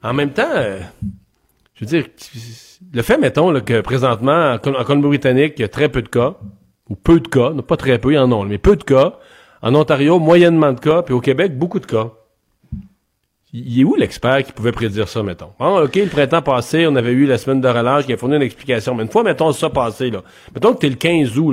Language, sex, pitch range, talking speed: French, male, 120-165 Hz, 250 wpm